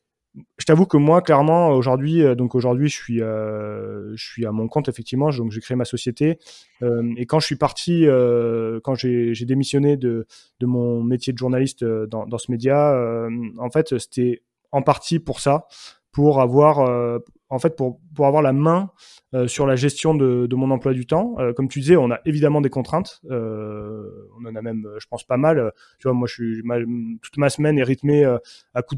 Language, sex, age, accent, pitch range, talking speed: French, male, 20-39, French, 120-145 Hz, 215 wpm